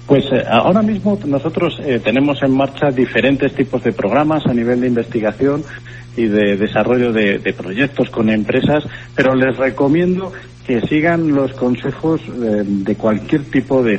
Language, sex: Spanish, male